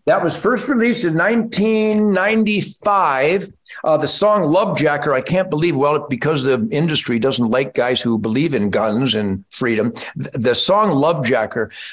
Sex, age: male, 50-69